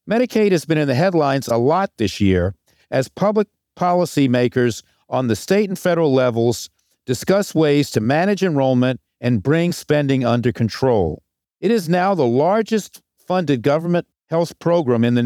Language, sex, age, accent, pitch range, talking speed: English, male, 50-69, American, 125-185 Hz, 155 wpm